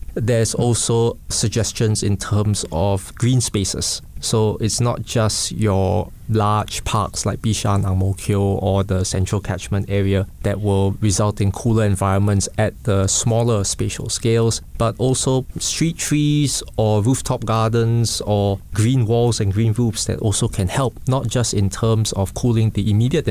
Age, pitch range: 20-39, 100-115 Hz